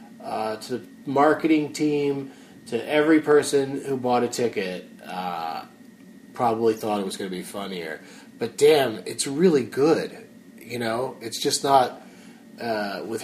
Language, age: English, 30-49